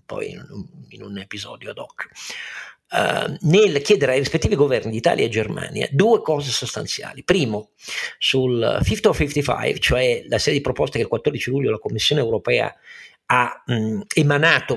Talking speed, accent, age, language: 145 wpm, native, 50-69, Italian